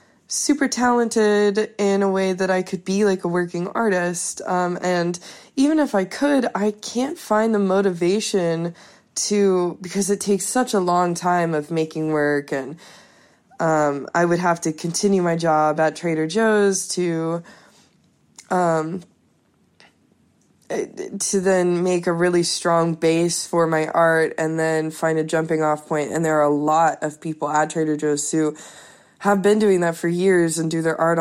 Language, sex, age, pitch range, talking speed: English, female, 20-39, 160-185 Hz, 165 wpm